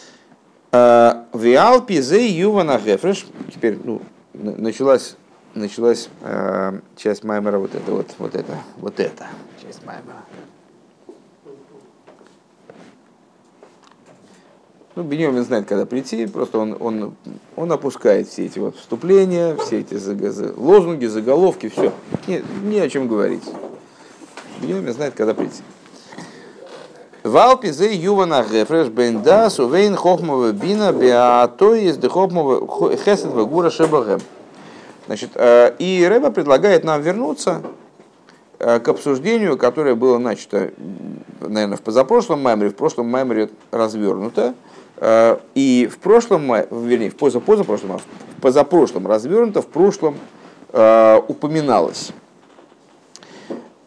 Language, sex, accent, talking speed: Russian, male, native, 105 wpm